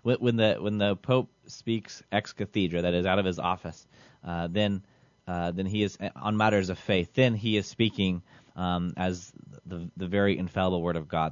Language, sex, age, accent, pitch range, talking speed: English, male, 20-39, American, 90-120 Hz, 195 wpm